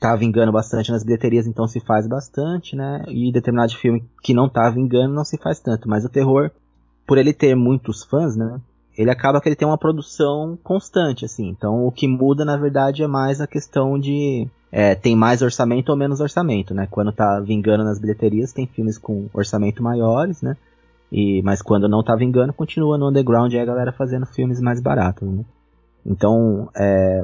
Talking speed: 190 wpm